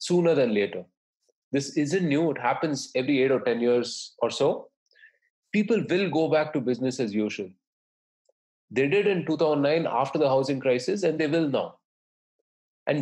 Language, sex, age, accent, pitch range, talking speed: English, male, 30-49, Indian, 130-180 Hz, 165 wpm